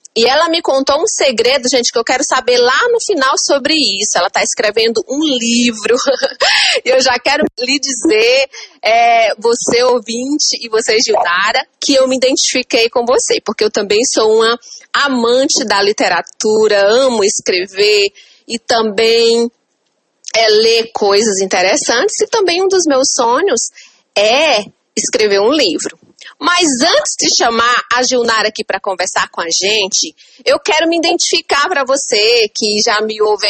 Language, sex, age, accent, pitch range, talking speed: Portuguese, female, 30-49, Brazilian, 230-350 Hz, 150 wpm